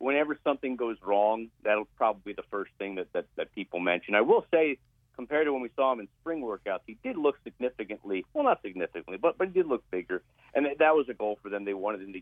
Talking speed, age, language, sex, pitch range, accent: 255 wpm, 50-69, English, male, 105-155 Hz, American